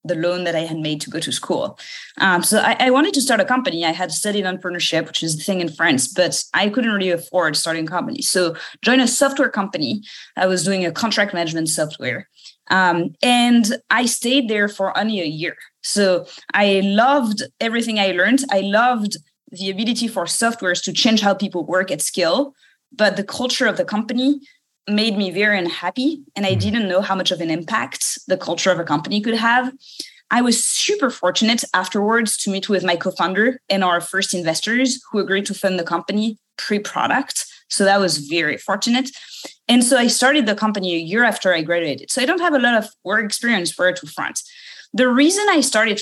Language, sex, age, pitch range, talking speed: English, female, 20-39, 180-245 Hz, 205 wpm